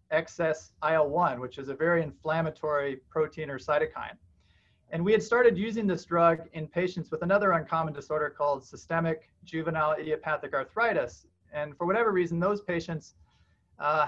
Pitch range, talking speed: 145-175 Hz, 150 wpm